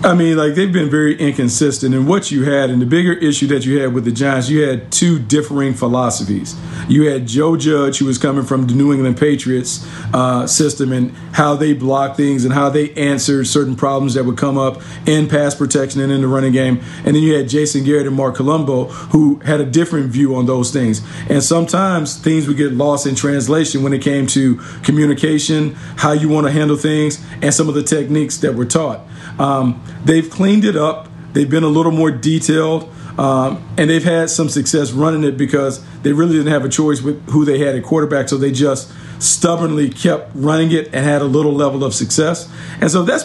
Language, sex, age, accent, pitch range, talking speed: English, male, 40-59, American, 135-155 Hz, 215 wpm